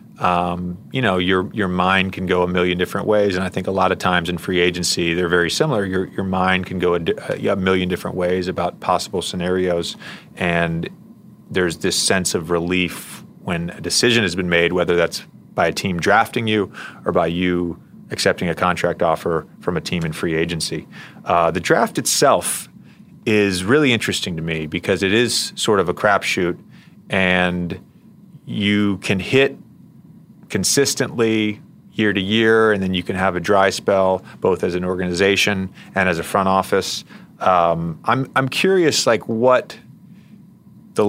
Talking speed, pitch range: 170 wpm, 90-105 Hz